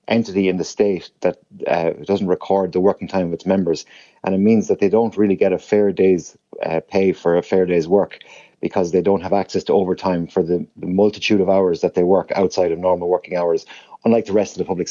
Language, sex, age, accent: English, male, 30-49, Irish